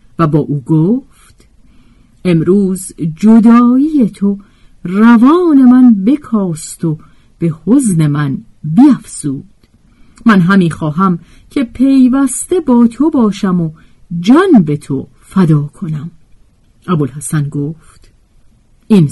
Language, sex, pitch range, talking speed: Persian, female, 150-245 Hz, 100 wpm